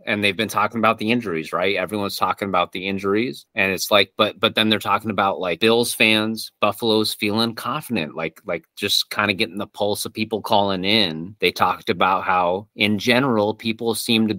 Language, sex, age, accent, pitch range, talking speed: English, male, 30-49, American, 95-110 Hz, 205 wpm